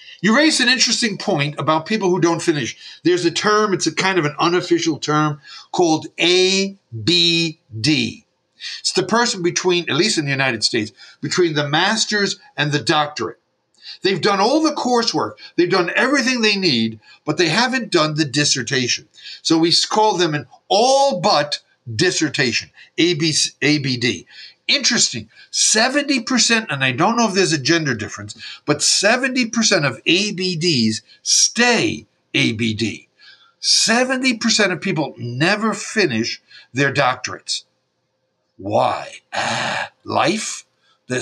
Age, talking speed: 50-69, 130 wpm